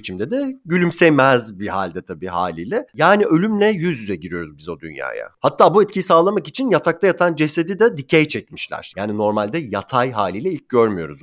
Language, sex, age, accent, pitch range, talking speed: Turkish, male, 40-59, native, 120-175 Hz, 170 wpm